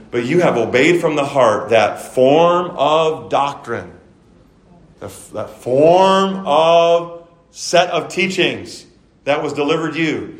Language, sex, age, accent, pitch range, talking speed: English, male, 40-59, American, 130-170 Hz, 120 wpm